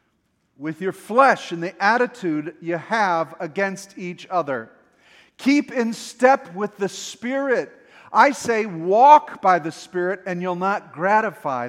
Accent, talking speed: American, 140 wpm